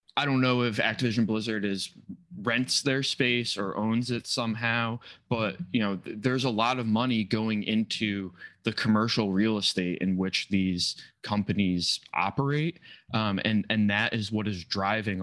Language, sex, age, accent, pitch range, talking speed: English, male, 20-39, American, 95-115 Hz, 165 wpm